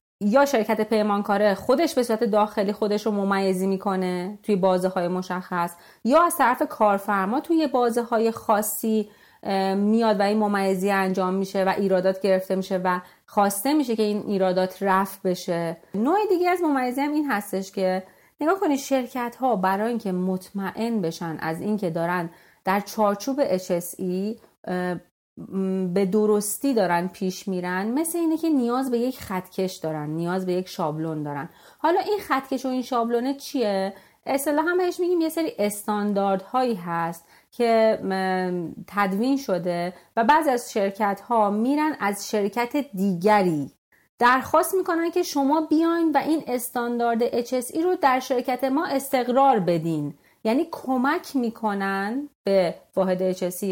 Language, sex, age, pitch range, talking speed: Persian, female, 30-49, 185-255 Hz, 145 wpm